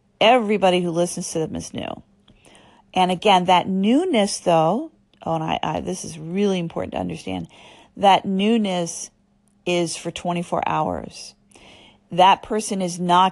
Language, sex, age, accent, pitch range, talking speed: English, female, 40-59, American, 160-195 Hz, 145 wpm